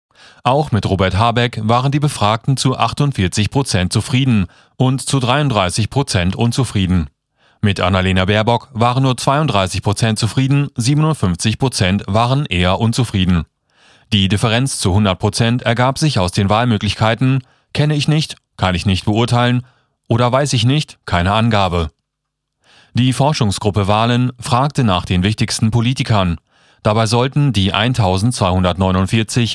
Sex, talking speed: male, 125 wpm